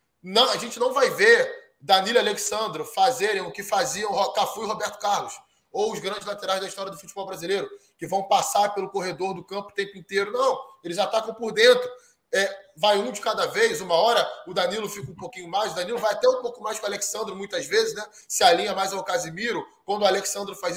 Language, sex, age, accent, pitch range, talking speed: Portuguese, male, 20-39, Brazilian, 195-275 Hz, 220 wpm